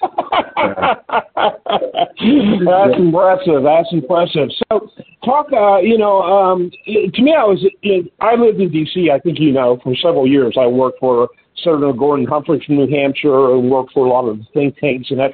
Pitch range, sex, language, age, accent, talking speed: 145-205 Hz, male, English, 50-69, American, 170 wpm